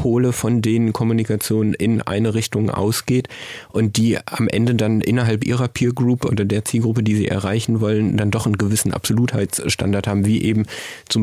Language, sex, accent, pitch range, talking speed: German, male, German, 105-120 Hz, 170 wpm